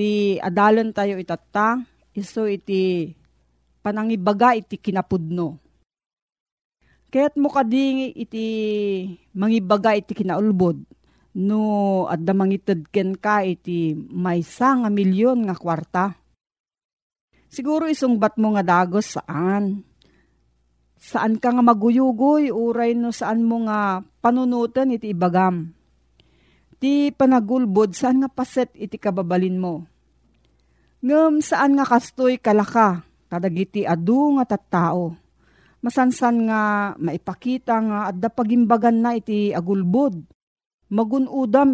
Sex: female